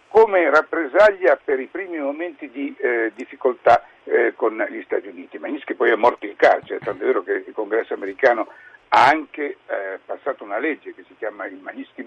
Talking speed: 190 wpm